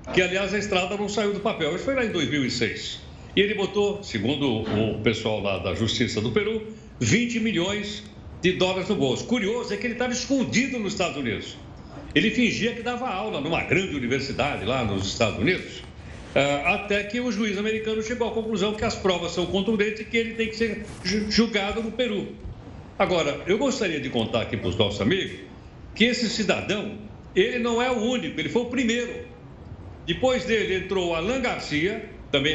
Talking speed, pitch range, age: 185 wpm, 145-235 Hz, 60-79